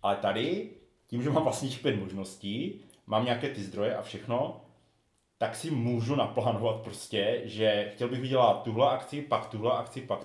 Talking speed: 170 wpm